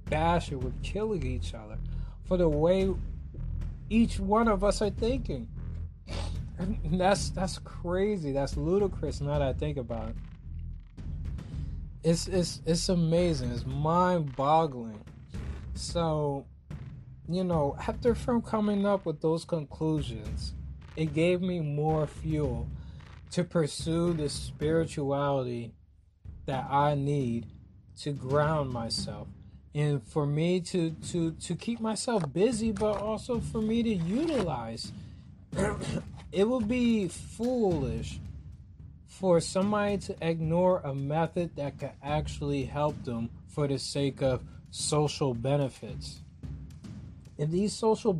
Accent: American